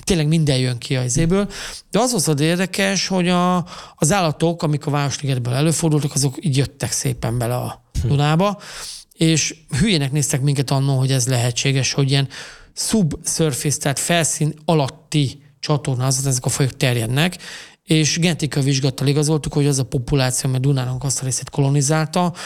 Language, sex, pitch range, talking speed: Hungarian, male, 135-160 Hz, 155 wpm